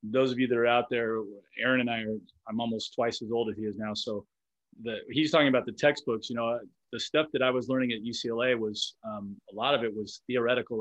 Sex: male